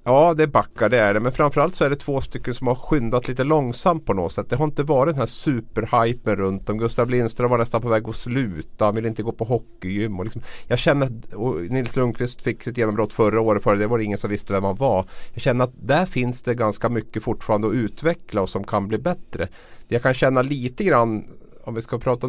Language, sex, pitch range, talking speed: Swedish, male, 105-125 Hz, 245 wpm